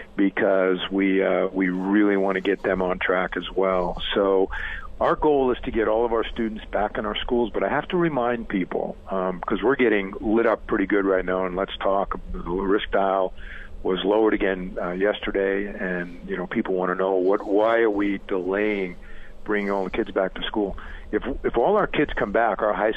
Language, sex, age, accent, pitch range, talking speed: English, male, 50-69, American, 95-105 Hz, 215 wpm